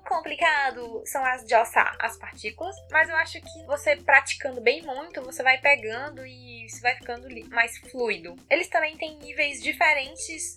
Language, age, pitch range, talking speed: Portuguese, 10-29, 240-335 Hz, 165 wpm